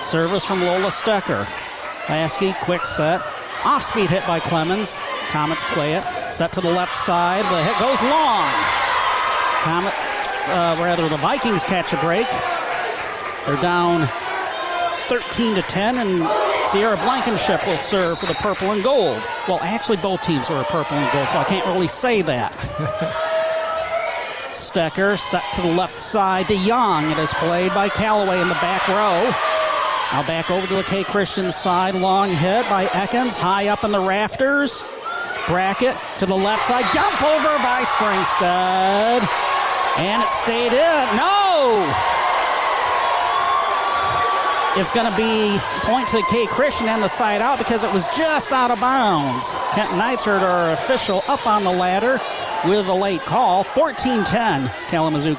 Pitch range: 175-240 Hz